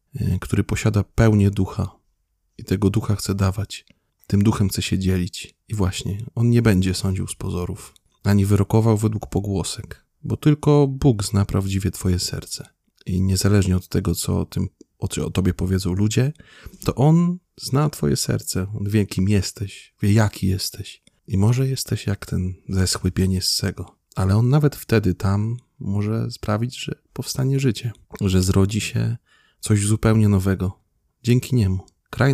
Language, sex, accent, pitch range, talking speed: Polish, male, native, 95-110 Hz, 150 wpm